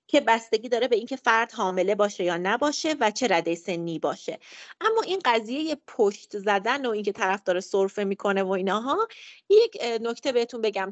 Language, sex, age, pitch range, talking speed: Persian, female, 30-49, 190-260 Hz, 175 wpm